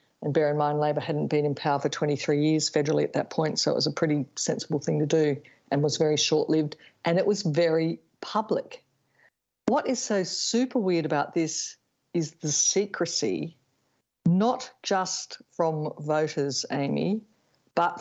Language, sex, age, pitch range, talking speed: English, female, 50-69, 150-170 Hz, 165 wpm